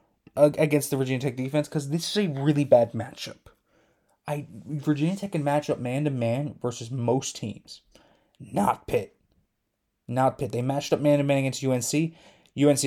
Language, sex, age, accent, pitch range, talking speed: English, male, 20-39, American, 120-150 Hz, 155 wpm